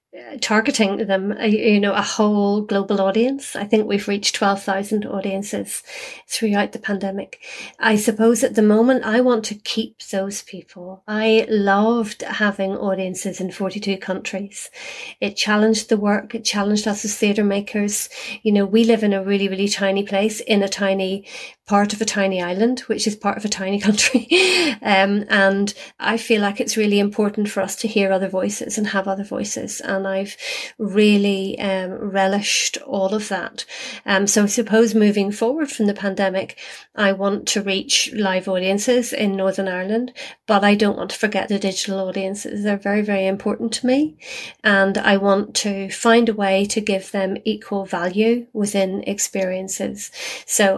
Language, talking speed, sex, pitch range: German, 170 wpm, female, 195-220 Hz